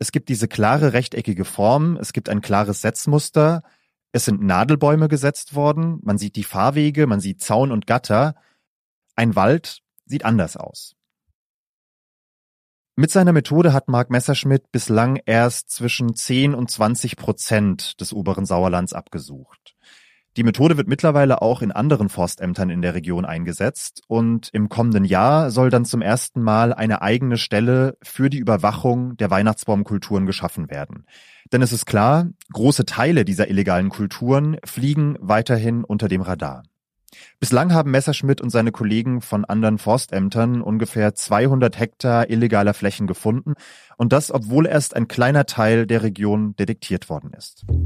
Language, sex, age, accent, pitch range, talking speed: German, male, 30-49, German, 105-135 Hz, 150 wpm